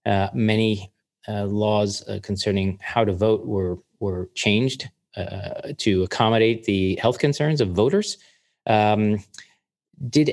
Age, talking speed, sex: 40-59, 130 wpm, male